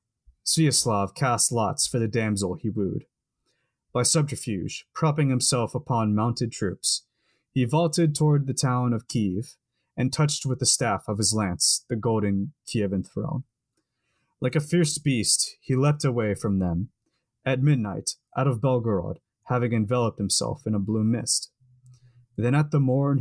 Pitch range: 105-130 Hz